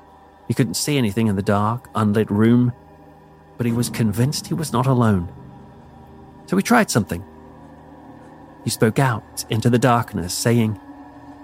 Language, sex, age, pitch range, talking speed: English, male, 40-59, 100-135 Hz, 145 wpm